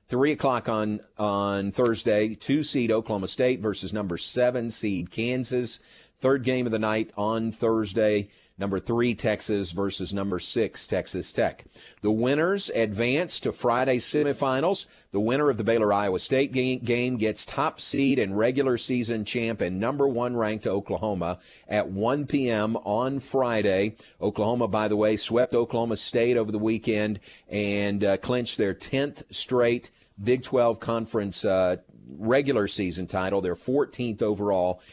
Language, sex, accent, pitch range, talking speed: English, male, American, 100-125 Hz, 150 wpm